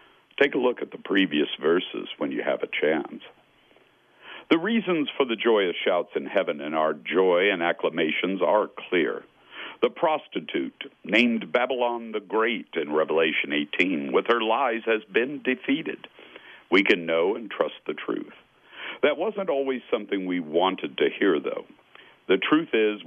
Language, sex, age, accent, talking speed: English, male, 60-79, American, 160 wpm